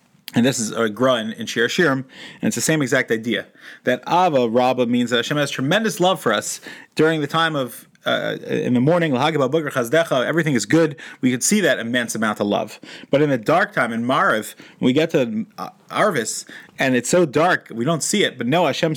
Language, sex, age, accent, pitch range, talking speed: English, male, 30-49, American, 125-160 Hz, 210 wpm